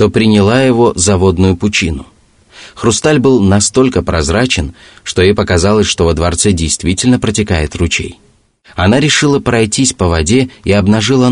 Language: Russian